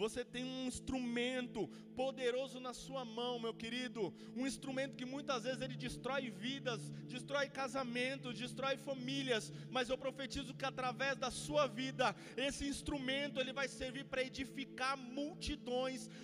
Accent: Brazilian